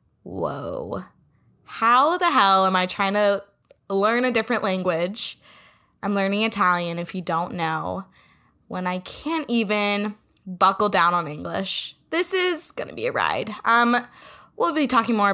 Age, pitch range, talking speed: 10-29, 190-275 Hz, 150 wpm